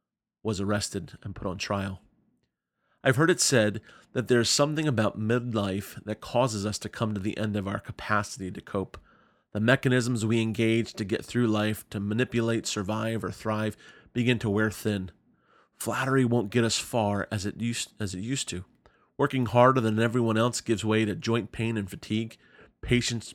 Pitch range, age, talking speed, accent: 105-125 Hz, 30-49, 170 wpm, American